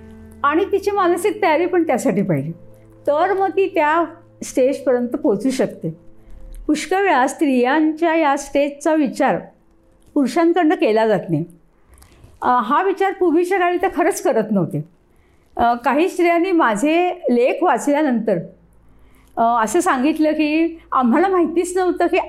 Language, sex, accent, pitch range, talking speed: Marathi, female, native, 240-345 Hz, 110 wpm